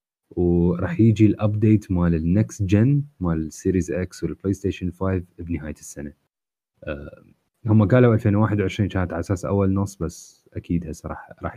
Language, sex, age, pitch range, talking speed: Arabic, male, 30-49, 85-105 Hz, 140 wpm